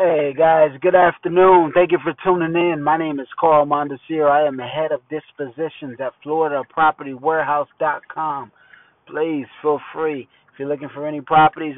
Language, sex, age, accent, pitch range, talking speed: English, male, 20-39, American, 135-155 Hz, 160 wpm